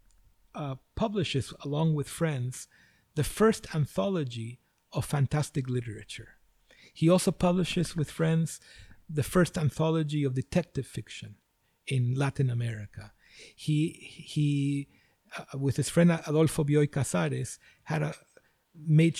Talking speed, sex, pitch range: 115 wpm, male, 130-165 Hz